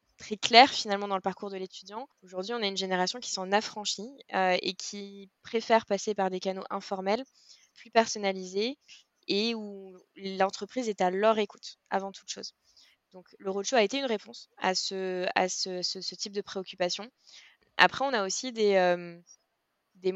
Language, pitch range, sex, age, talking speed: French, 185-215 Hz, female, 20-39, 165 wpm